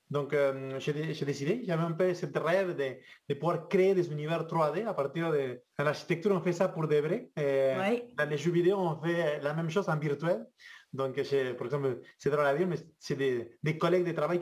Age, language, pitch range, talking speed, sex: 30-49, French, 145-180 Hz, 220 wpm, male